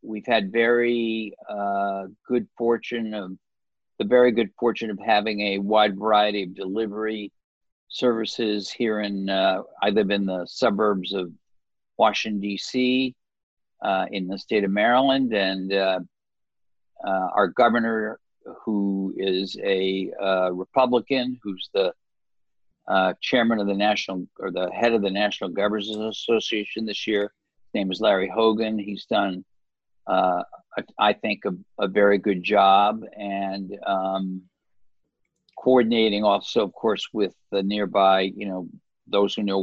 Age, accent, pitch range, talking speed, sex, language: 50-69, American, 95-115 Hz, 140 wpm, male, English